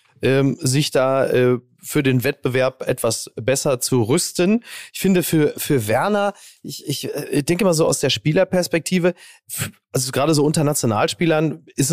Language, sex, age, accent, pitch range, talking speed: German, male, 30-49, German, 115-150 Hz, 140 wpm